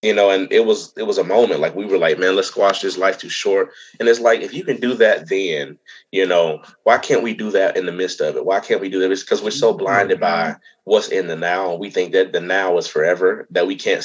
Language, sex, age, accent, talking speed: English, male, 20-39, American, 285 wpm